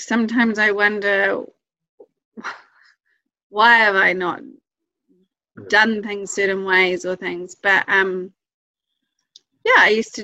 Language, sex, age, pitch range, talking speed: English, female, 30-49, 190-275 Hz, 110 wpm